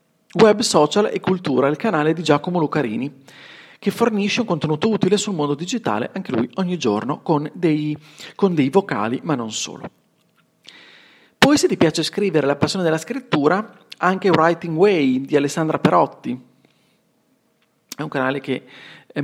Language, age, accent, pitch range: Italian, 40-59, native, 145-190 Hz